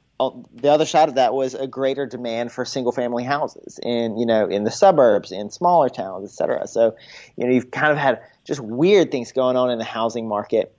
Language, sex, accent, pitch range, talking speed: English, male, American, 115-135 Hz, 215 wpm